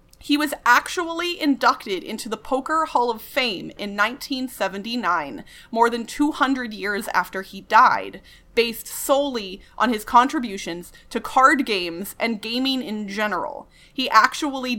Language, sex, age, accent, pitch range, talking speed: English, female, 30-49, American, 205-265 Hz, 135 wpm